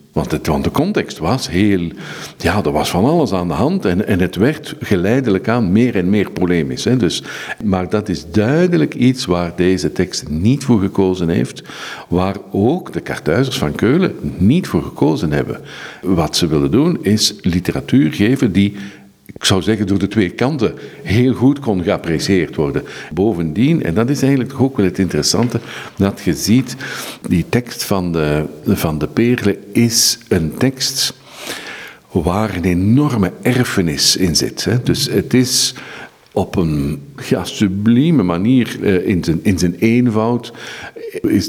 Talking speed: 160 wpm